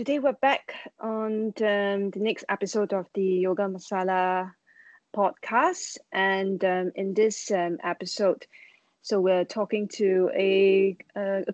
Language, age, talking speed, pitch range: English, 20-39, 130 wpm, 185-225 Hz